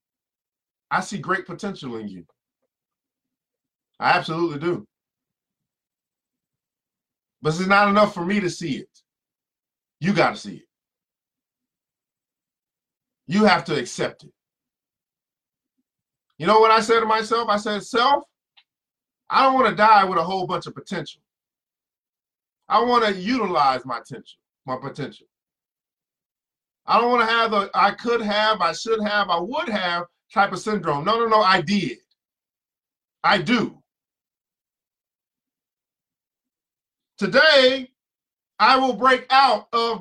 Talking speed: 130 wpm